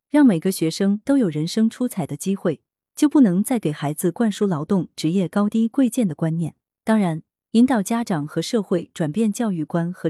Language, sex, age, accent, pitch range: Chinese, female, 30-49, native, 160-220 Hz